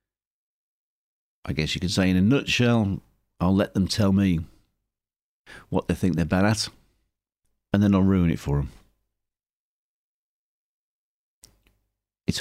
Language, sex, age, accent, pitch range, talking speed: English, male, 50-69, British, 85-105 Hz, 130 wpm